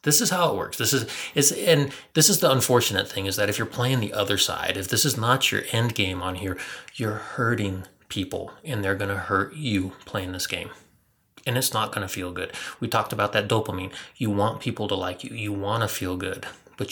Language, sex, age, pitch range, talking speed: English, male, 30-49, 95-120 Hz, 240 wpm